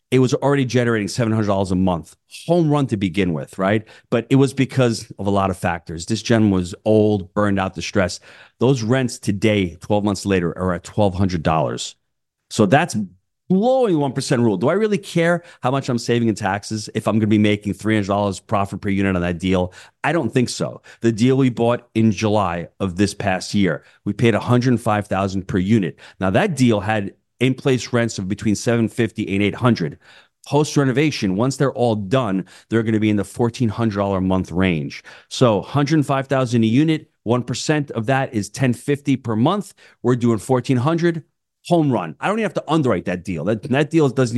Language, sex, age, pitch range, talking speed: English, male, 30-49, 100-125 Hz, 190 wpm